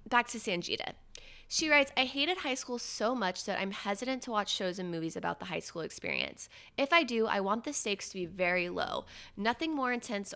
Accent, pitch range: American, 180-240 Hz